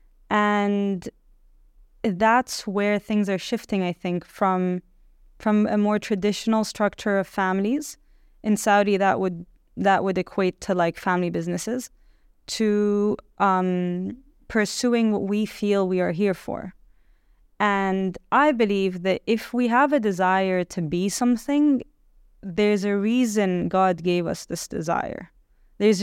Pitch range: 190-220 Hz